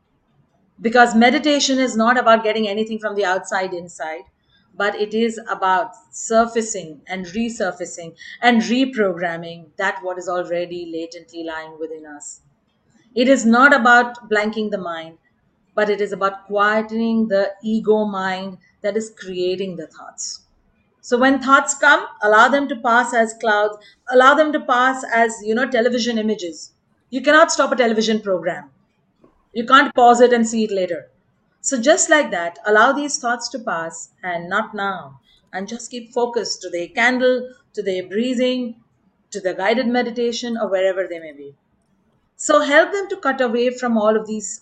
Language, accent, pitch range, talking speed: English, Indian, 190-240 Hz, 165 wpm